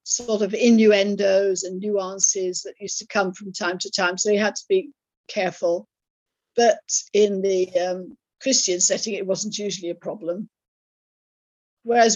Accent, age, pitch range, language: British, 50-69, 195-240 Hz, English